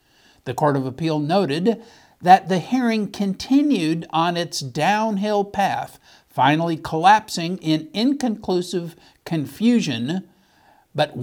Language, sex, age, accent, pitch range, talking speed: English, male, 60-79, American, 150-200 Hz, 100 wpm